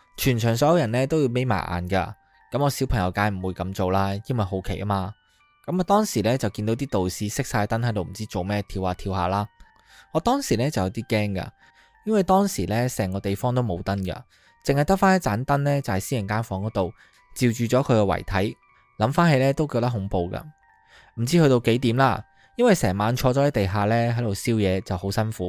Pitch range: 100-135 Hz